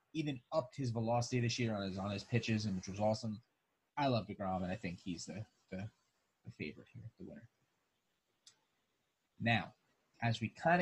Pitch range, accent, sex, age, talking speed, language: 110-130 Hz, American, male, 30-49, 185 wpm, English